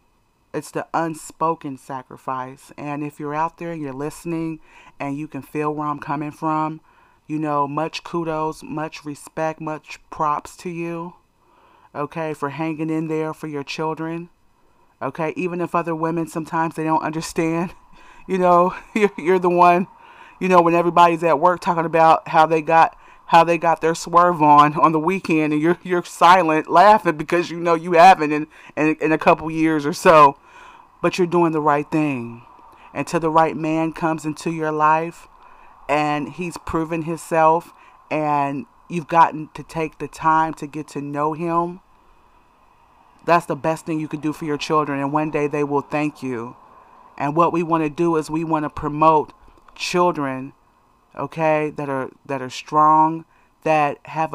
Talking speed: 175 wpm